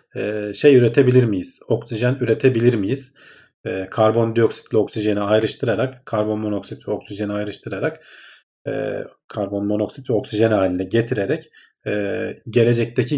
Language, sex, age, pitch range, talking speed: Turkish, male, 40-59, 110-135 Hz, 75 wpm